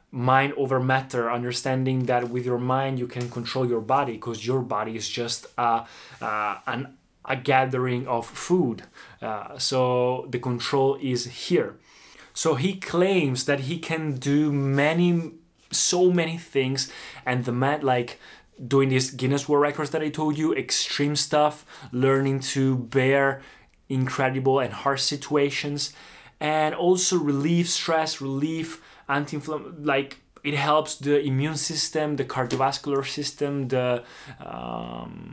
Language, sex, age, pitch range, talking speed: Italian, male, 20-39, 125-145 Hz, 140 wpm